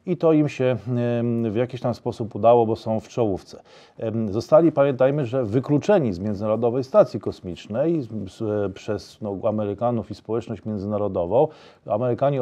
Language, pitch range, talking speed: Polish, 110-135 Hz, 130 wpm